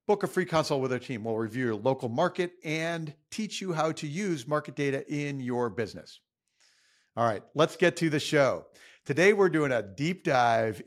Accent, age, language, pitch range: American, 50-69, English, 125-165 Hz